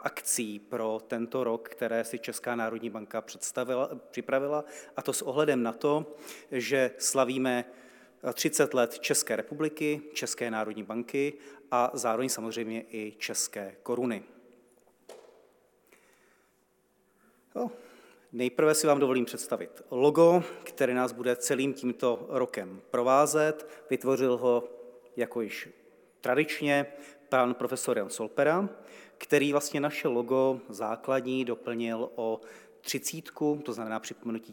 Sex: male